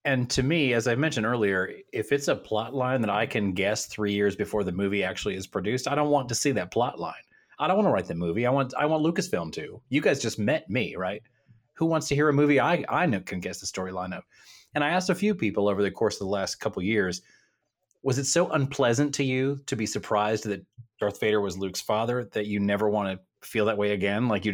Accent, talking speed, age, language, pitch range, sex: American, 255 wpm, 30-49, English, 105-135 Hz, male